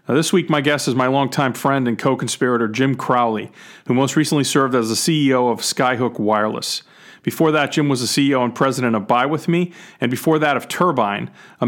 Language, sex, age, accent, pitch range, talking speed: English, male, 40-59, American, 110-140 Hz, 205 wpm